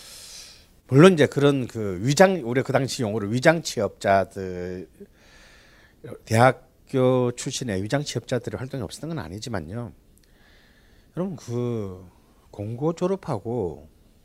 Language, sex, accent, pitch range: Korean, male, native, 100-140 Hz